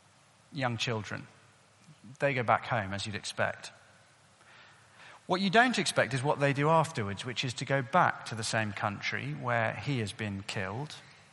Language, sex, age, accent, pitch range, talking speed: English, male, 40-59, British, 120-155 Hz, 170 wpm